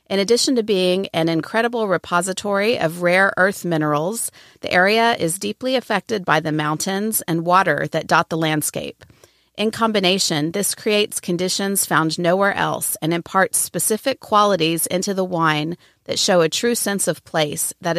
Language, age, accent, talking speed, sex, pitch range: English, 40-59, American, 160 wpm, female, 165-200 Hz